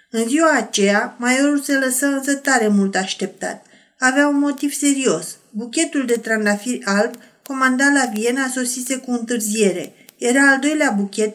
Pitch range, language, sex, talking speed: 215-265 Hz, Romanian, female, 150 wpm